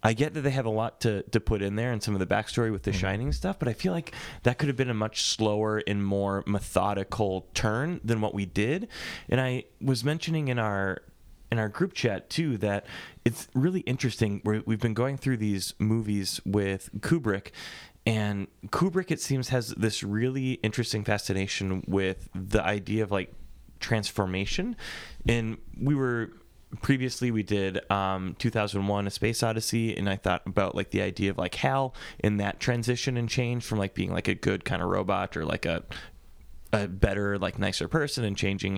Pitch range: 100-120 Hz